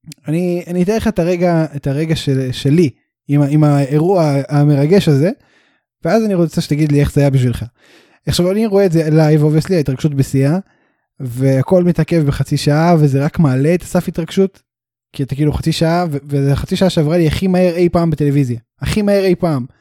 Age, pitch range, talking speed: 10-29, 140-180 Hz, 180 wpm